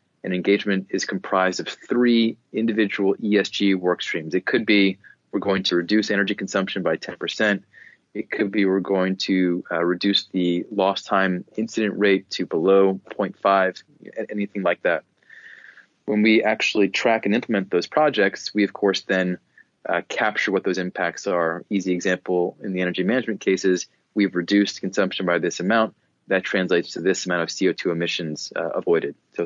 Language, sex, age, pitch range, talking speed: English, male, 30-49, 90-100 Hz, 165 wpm